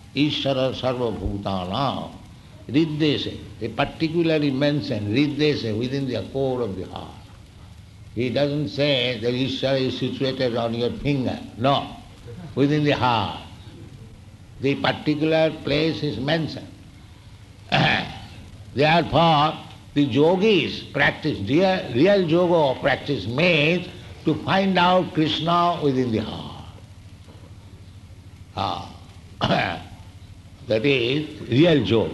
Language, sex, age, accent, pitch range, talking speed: English, male, 70-89, Indian, 100-145 Hz, 90 wpm